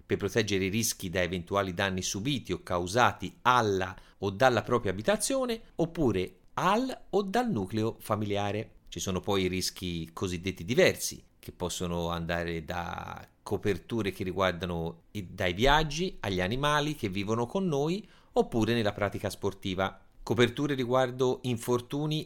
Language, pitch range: Italian, 90-125 Hz